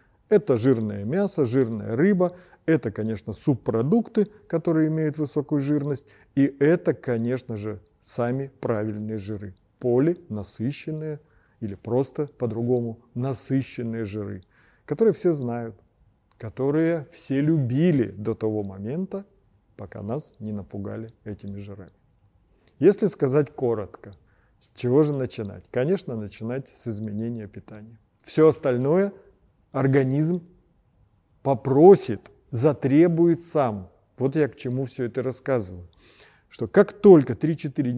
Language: Russian